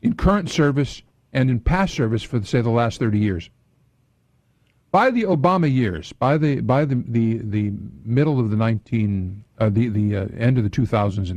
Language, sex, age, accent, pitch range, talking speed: English, male, 50-69, American, 110-135 Hz, 195 wpm